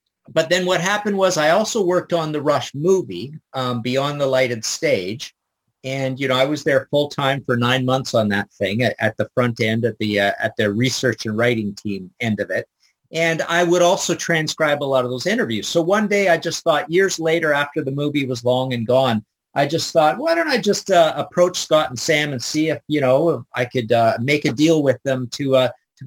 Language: English